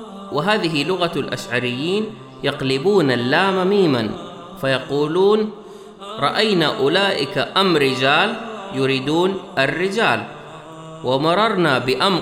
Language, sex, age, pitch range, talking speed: Arabic, male, 30-49, 145-200 Hz, 75 wpm